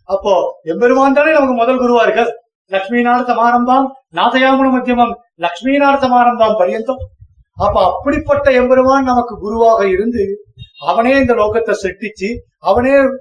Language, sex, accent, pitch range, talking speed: Tamil, male, native, 200-255 Hz, 110 wpm